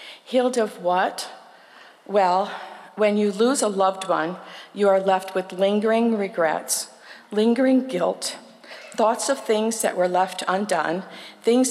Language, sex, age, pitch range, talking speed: English, female, 50-69, 185-220 Hz, 135 wpm